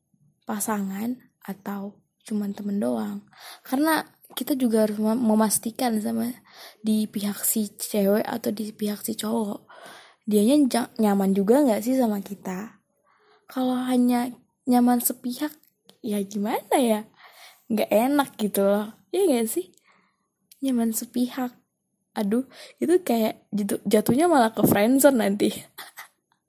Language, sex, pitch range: Indonesian, female, 205-245 Hz